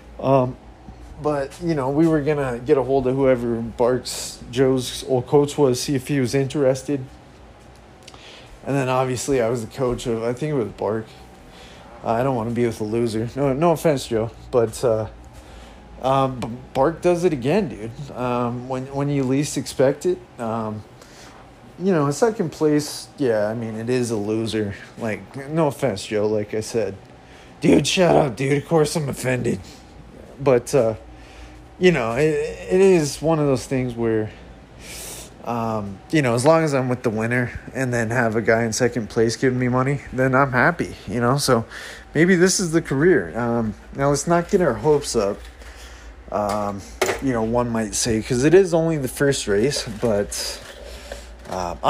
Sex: male